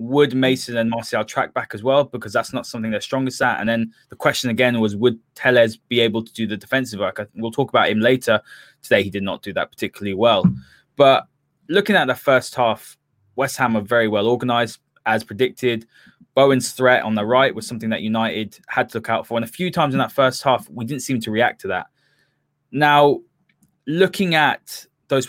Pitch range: 115-140 Hz